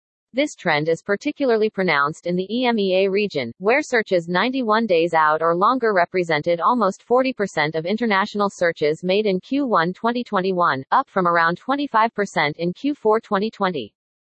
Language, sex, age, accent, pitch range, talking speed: English, female, 40-59, American, 175-220 Hz, 140 wpm